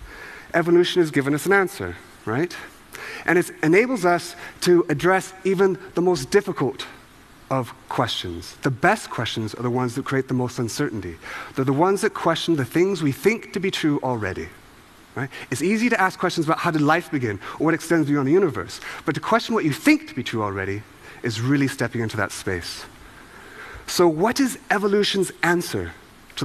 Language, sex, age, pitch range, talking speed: English, male, 30-49, 135-195 Hz, 185 wpm